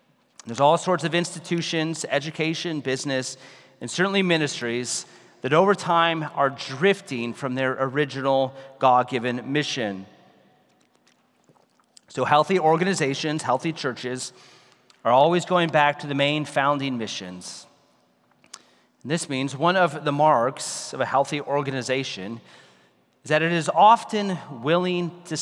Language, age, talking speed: English, 30-49, 125 wpm